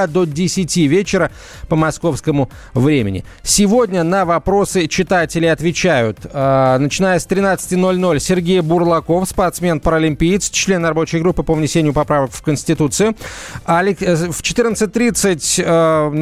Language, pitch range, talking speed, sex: Russian, 155-185 Hz, 100 wpm, male